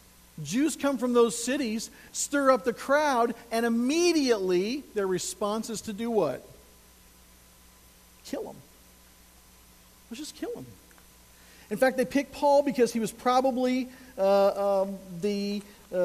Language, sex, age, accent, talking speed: English, male, 50-69, American, 135 wpm